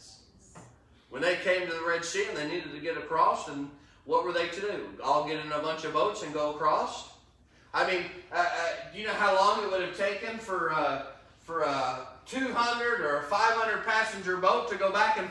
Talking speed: 215 wpm